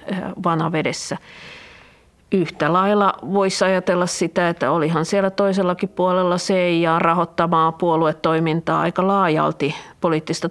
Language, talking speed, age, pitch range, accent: Finnish, 95 wpm, 50-69, 165-185 Hz, native